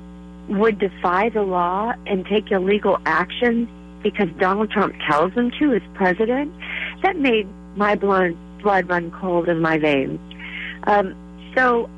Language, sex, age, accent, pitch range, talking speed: English, female, 40-59, American, 175-210 Hz, 140 wpm